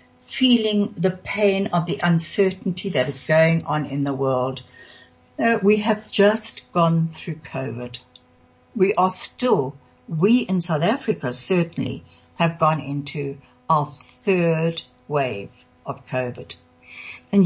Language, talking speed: German, 125 wpm